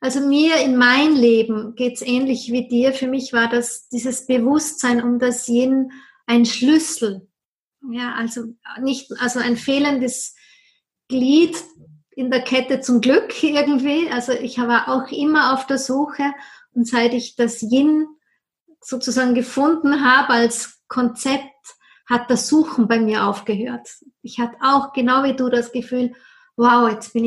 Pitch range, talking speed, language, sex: 235-265 Hz, 150 wpm, German, female